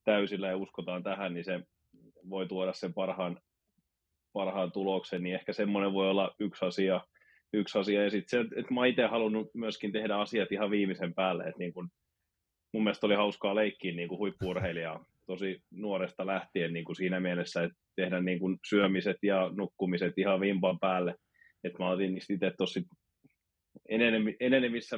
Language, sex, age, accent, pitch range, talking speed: Finnish, male, 30-49, native, 90-105 Hz, 150 wpm